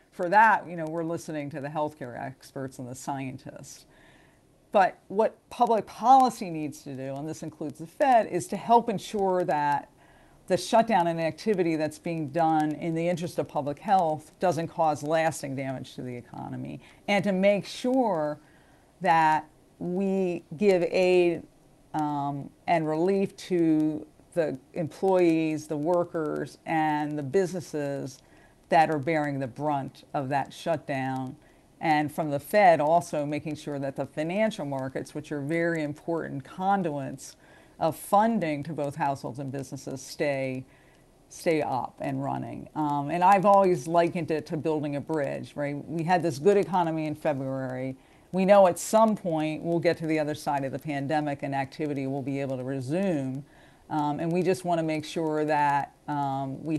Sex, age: female, 50-69